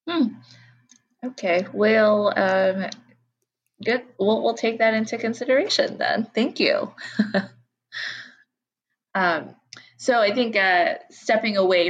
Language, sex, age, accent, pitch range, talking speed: English, female, 20-39, American, 165-210 Hz, 105 wpm